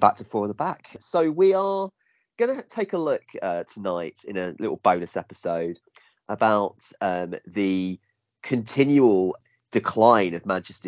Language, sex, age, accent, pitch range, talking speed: English, male, 30-49, British, 85-105 Hz, 155 wpm